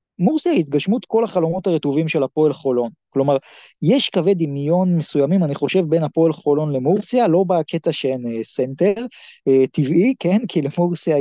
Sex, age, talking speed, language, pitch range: male, 20-39, 160 wpm, Hebrew, 145-205 Hz